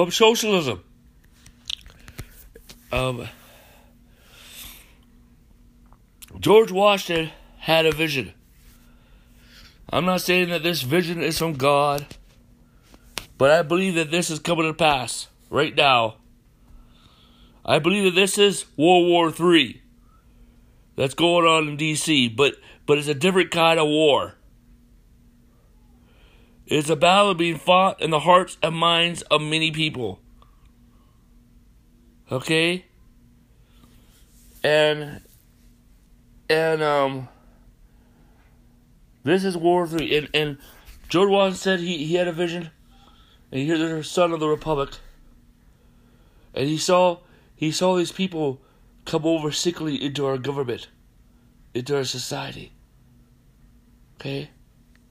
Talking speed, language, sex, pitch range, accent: 110 wpm, English, male, 140-175 Hz, American